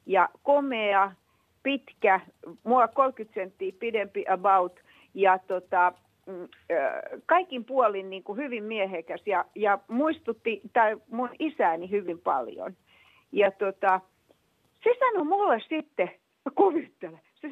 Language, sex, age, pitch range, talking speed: Finnish, female, 50-69, 190-285 Hz, 105 wpm